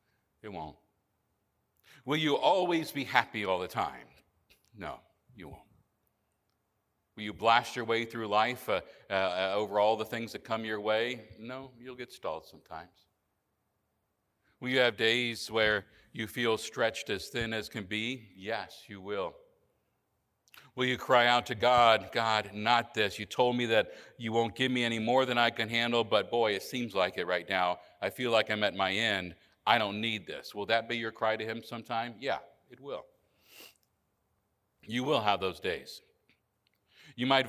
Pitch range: 105-120 Hz